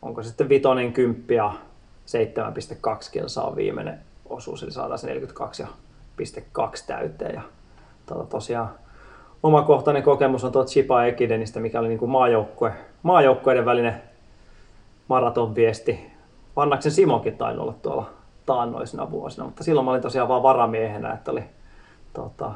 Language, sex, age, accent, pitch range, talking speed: Finnish, male, 30-49, native, 120-145 Hz, 115 wpm